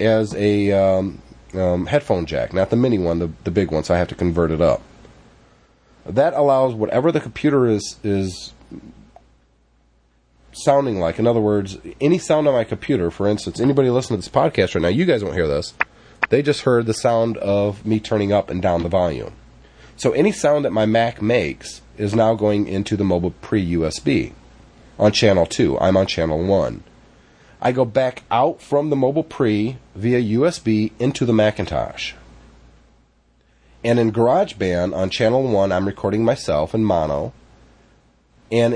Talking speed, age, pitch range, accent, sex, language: 170 wpm, 30-49, 85-115 Hz, American, male, English